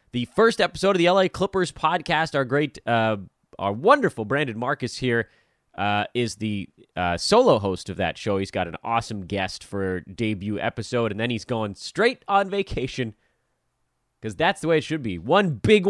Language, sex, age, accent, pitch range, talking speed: English, male, 30-49, American, 110-155 Hz, 185 wpm